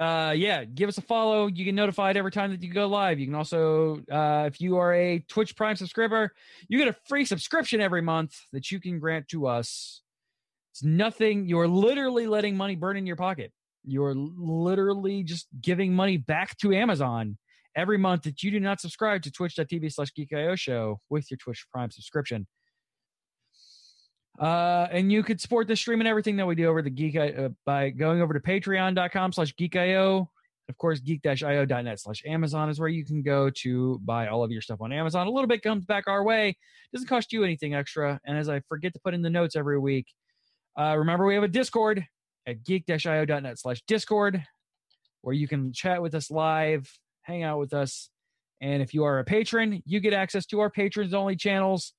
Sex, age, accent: male, 20-39, American